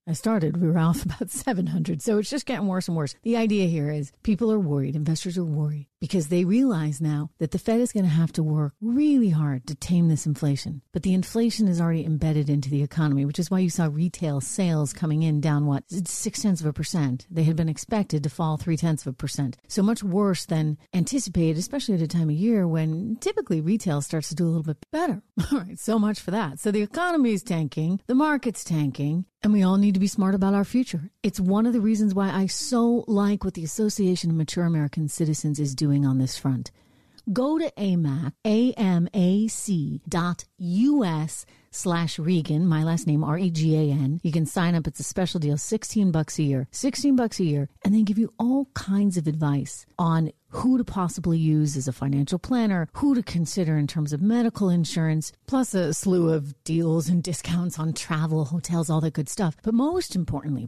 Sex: female